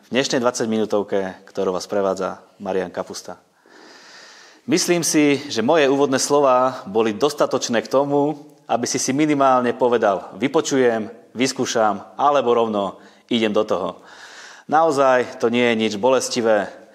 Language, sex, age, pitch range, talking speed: Slovak, male, 30-49, 105-135 Hz, 130 wpm